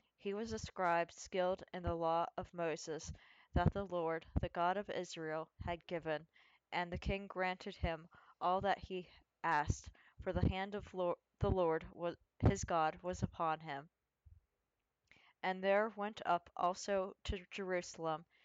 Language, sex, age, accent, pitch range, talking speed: English, female, 20-39, American, 165-190 Hz, 155 wpm